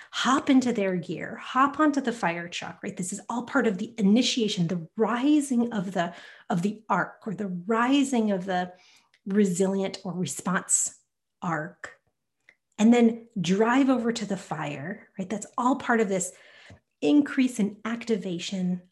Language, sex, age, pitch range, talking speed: English, female, 30-49, 195-240 Hz, 155 wpm